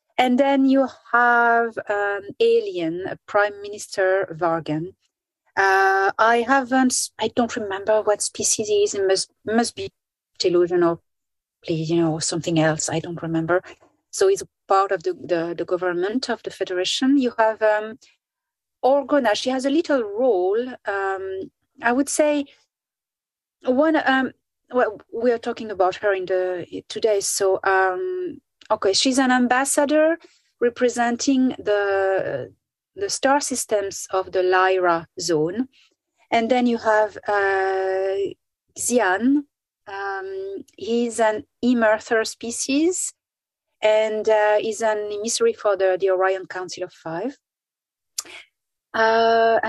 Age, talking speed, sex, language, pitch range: 30-49, 130 wpm, female, English, 190-260 Hz